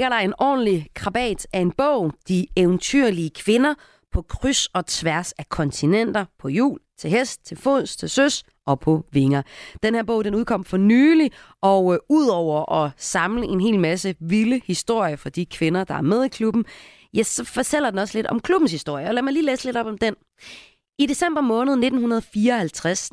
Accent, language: native, Danish